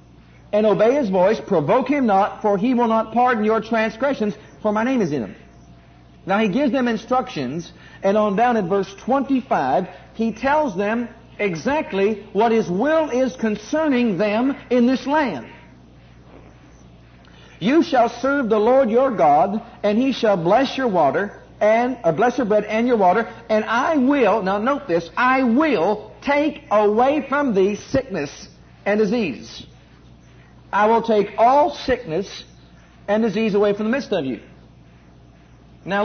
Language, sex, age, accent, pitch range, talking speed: English, male, 50-69, American, 170-250 Hz, 155 wpm